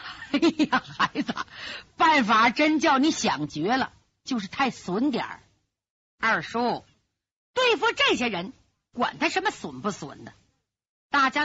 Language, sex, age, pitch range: Chinese, female, 50-69, 250-380 Hz